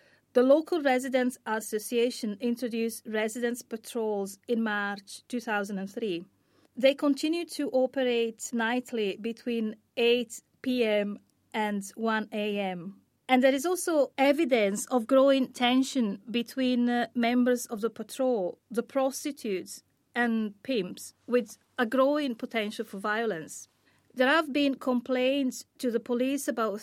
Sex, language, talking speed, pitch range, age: female, English, 115 wpm, 225-260 Hz, 30-49